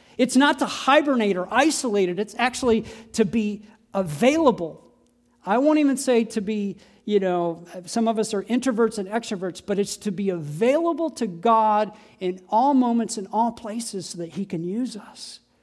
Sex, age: male, 40-59